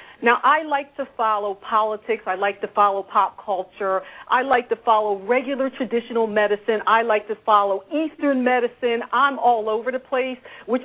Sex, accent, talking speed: female, American, 170 wpm